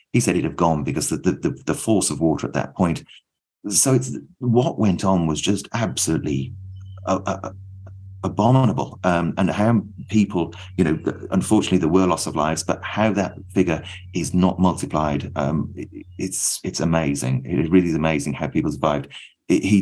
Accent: British